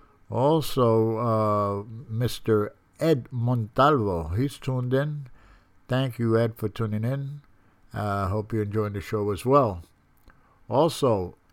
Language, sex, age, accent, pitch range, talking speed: English, male, 60-79, American, 100-125 Hz, 125 wpm